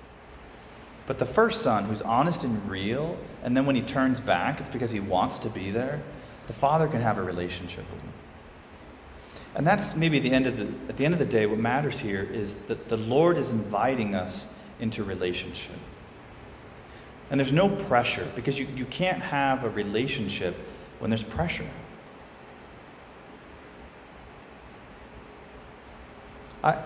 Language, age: English, 30-49